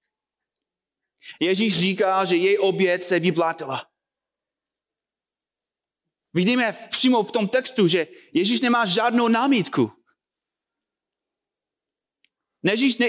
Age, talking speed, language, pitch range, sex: 30-49, 85 wpm, Czech, 170-265 Hz, male